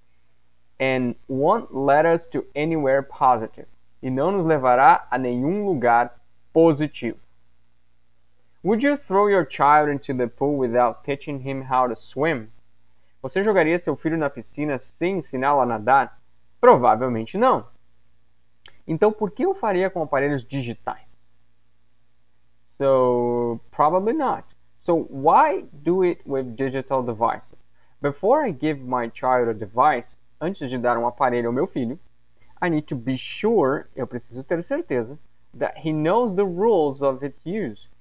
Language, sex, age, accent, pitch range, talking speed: Portuguese, male, 20-39, Brazilian, 115-160 Hz, 145 wpm